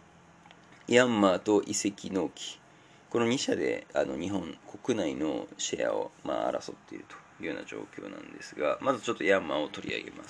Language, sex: Japanese, male